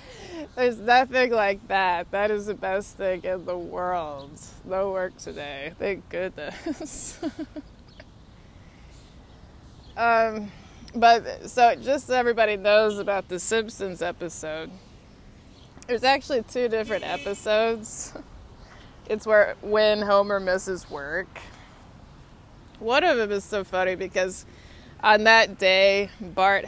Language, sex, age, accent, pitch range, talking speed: English, female, 20-39, American, 185-225 Hz, 110 wpm